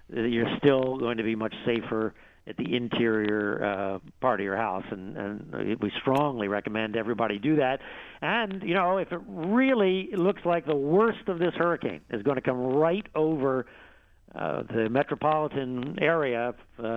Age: 50-69